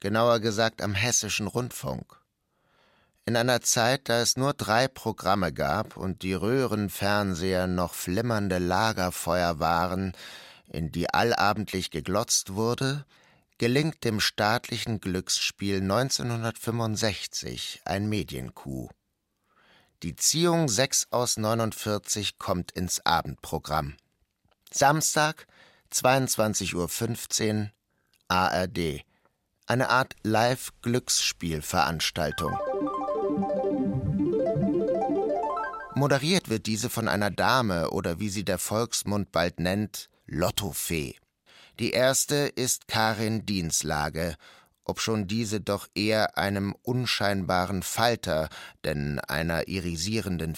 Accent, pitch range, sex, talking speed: German, 90-115 Hz, male, 95 wpm